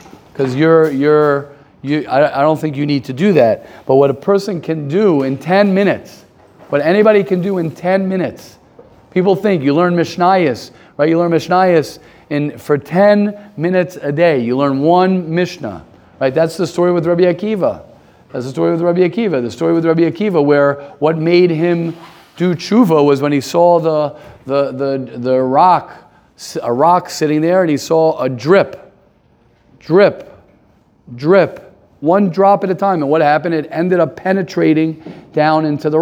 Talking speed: 175 wpm